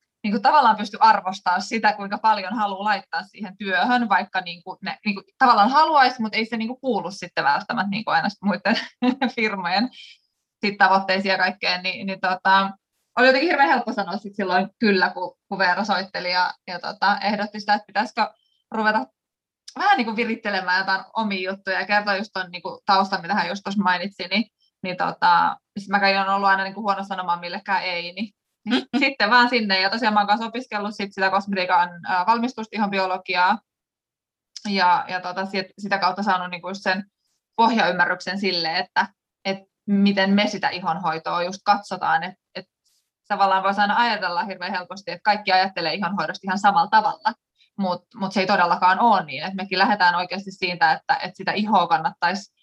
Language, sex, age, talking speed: Finnish, female, 20-39, 170 wpm